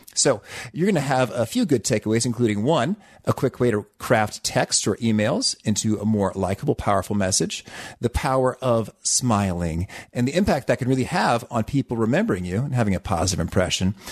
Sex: male